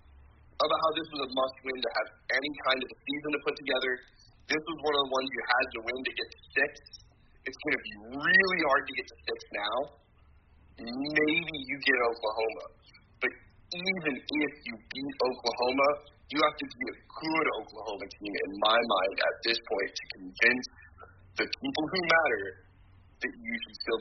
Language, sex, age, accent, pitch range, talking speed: English, male, 30-49, American, 100-155 Hz, 185 wpm